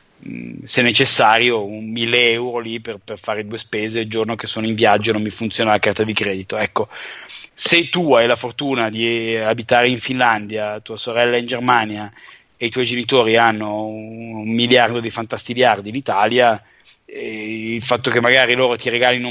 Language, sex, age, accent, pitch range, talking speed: Italian, male, 20-39, native, 110-125 Hz, 180 wpm